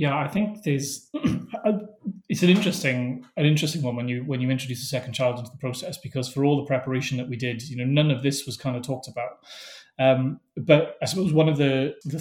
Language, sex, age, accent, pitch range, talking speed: English, male, 30-49, British, 130-150 Hz, 230 wpm